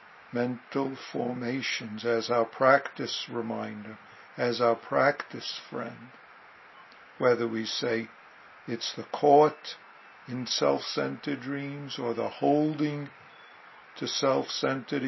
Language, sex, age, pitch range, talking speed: English, male, 60-79, 120-140 Hz, 95 wpm